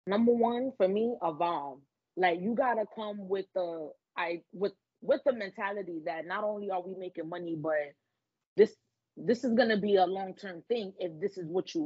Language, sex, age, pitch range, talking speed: English, female, 20-39, 180-225 Hz, 195 wpm